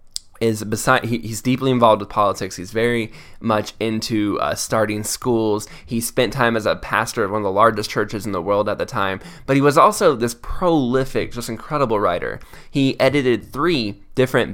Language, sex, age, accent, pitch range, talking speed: English, male, 10-29, American, 105-130 Hz, 190 wpm